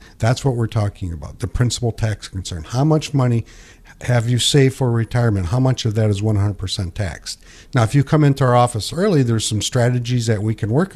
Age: 50-69